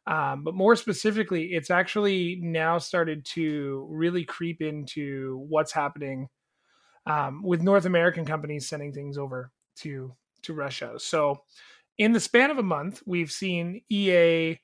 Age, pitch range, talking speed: 30-49, 150-190 Hz, 145 wpm